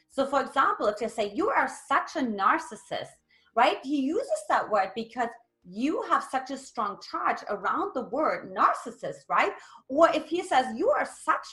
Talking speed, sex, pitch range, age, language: 180 wpm, female, 245-360 Hz, 30-49, English